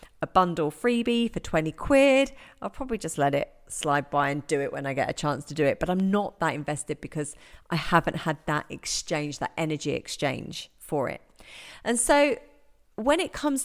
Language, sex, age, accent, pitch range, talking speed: English, female, 40-59, British, 155-235 Hz, 200 wpm